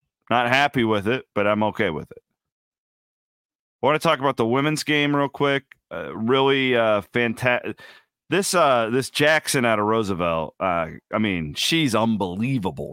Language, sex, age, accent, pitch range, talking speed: English, male, 30-49, American, 105-135 Hz, 160 wpm